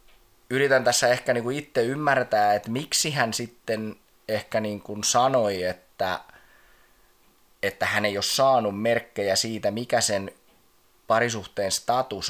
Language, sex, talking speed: Finnish, male, 110 wpm